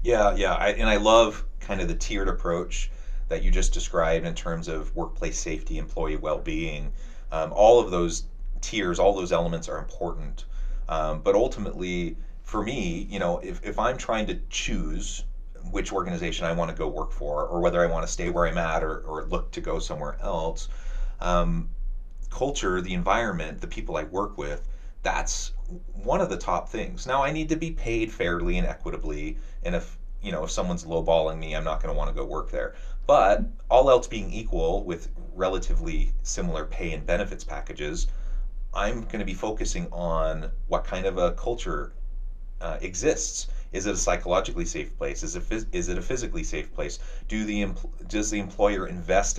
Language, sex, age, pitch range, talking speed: English, male, 30-49, 80-100 Hz, 185 wpm